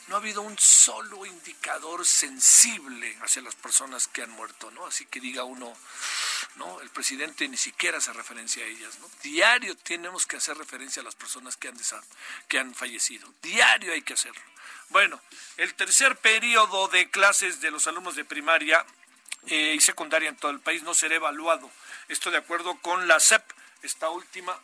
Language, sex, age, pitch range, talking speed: Spanish, male, 50-69, 150-195 Hz, 180 wpm